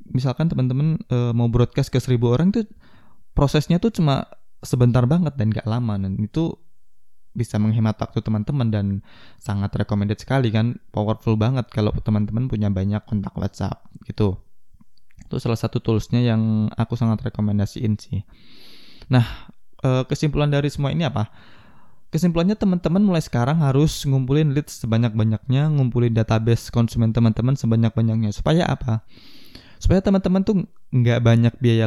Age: 20-39